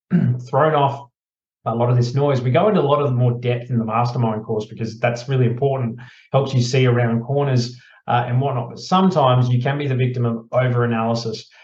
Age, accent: 30-49, Australian